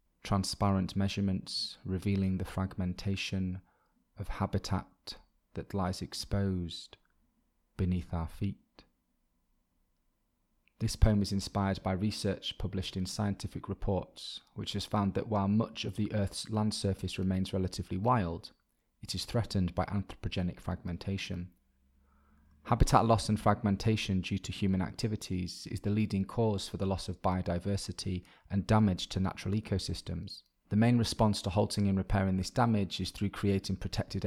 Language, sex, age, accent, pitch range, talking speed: English, male, 20-39, British, 95-105 Hz, 135 wpm